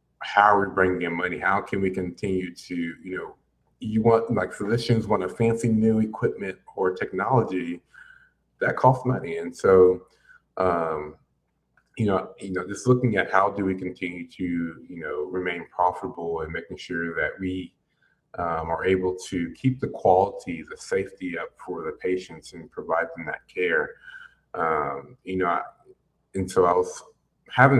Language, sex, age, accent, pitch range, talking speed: English, male, 30-49, American, 95-145 Hz, 165 wpm